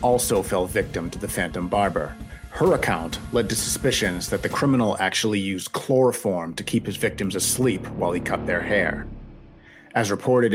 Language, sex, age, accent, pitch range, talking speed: English, male, 40-59, American, 100-130 Hz, 170 wpm